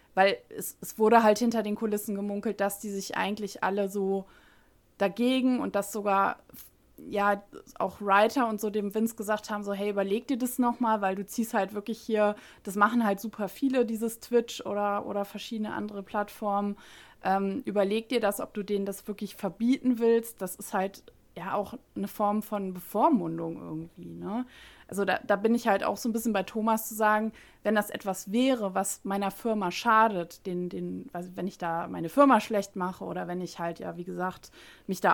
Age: 20-39